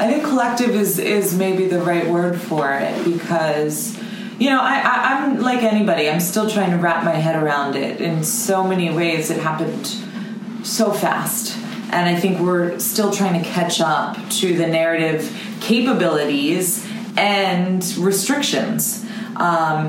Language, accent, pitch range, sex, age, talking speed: English, American, 170-220 Hz, female, 20-39, 155 wpm